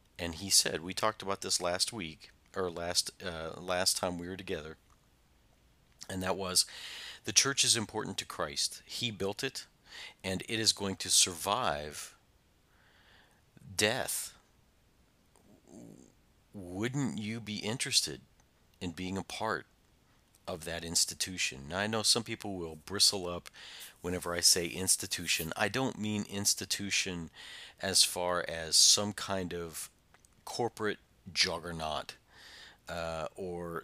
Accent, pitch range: American, 85-105 Hz